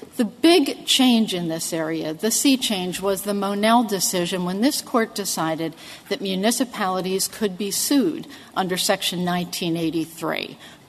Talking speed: 140 wpm